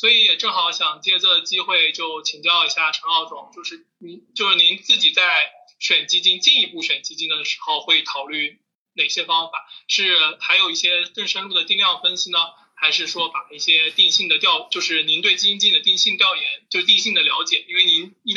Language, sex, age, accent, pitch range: Chinese, male, 20-39, native, 125-180 Hz